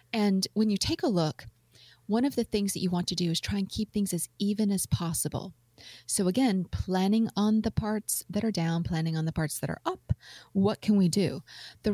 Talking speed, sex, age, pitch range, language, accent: 225 wpm, female, 30-49, 165-210 Hz, English, American